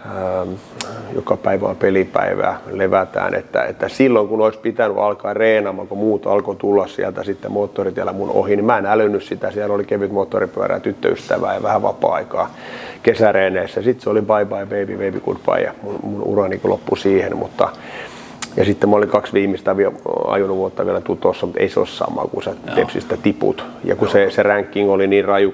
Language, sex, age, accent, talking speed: Finnish, male, 30-49, native, 180 wpm